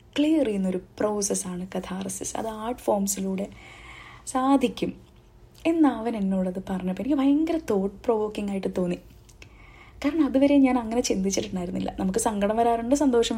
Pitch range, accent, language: 190-265 Hz, native, Malayalam